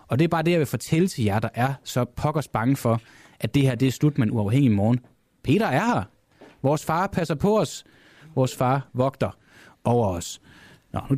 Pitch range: 95-150 Hz